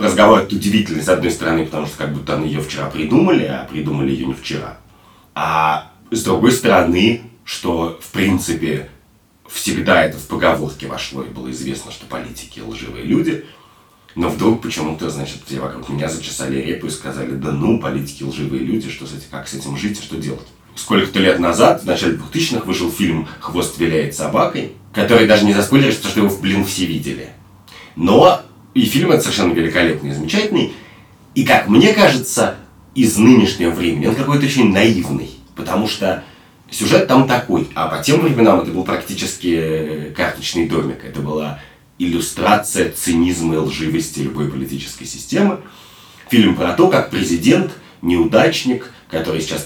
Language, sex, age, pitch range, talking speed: Russian, male, 30-49, 70-95 Hz, 160 wpm